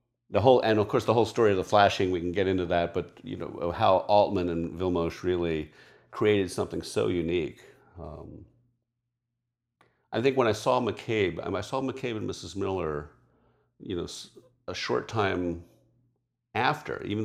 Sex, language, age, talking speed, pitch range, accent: male, English, 50-69, 165 wpm, 85-120 Hz, American